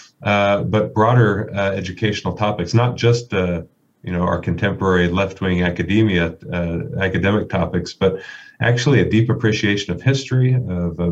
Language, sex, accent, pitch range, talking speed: English, male, American, 90-105 Hz, 145 wpm